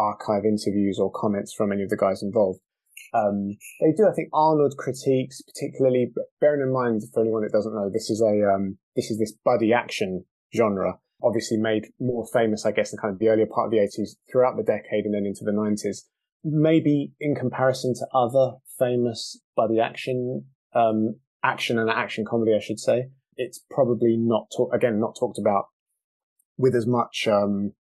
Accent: British